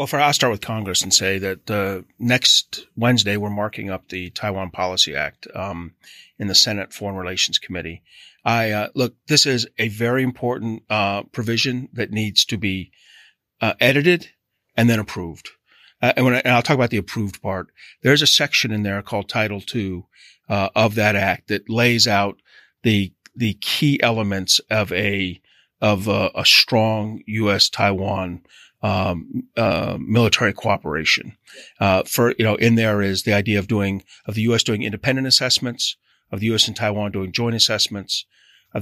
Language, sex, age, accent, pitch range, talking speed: English, male, 40-59, American, 100-115 Hz, 175 wpm